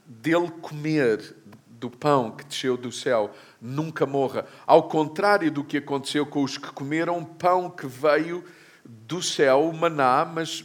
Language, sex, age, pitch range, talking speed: Portuguese, male, 50-69, 140-200 Hz, 150 wpm